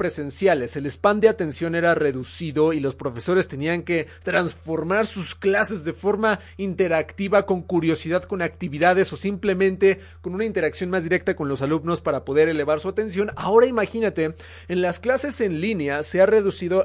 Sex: male